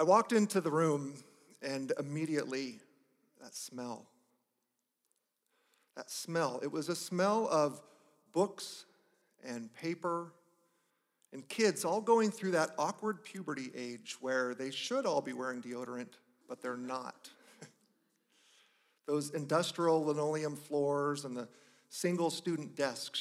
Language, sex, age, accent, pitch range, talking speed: English, male, 40-59, American, 130-170 Hz, 120 wpm